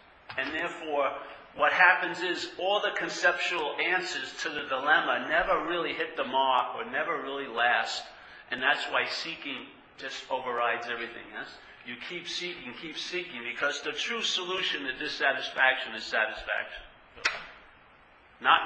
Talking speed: 140 wpm